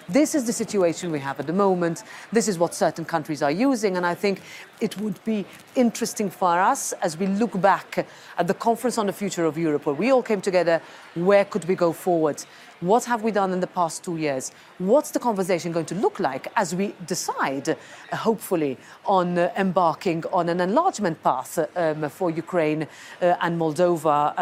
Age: 40-59